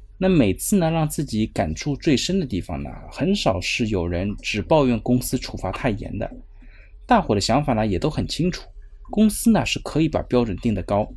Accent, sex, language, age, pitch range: native, male, Chinese, 20-39, 100-155 Hz